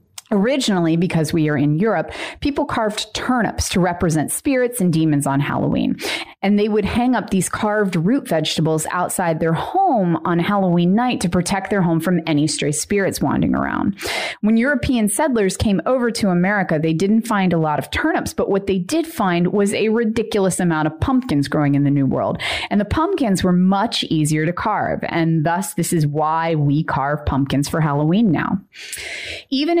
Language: English